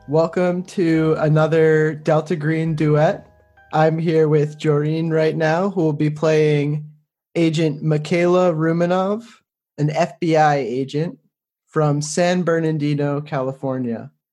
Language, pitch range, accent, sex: English, 145-170 Hz, American, male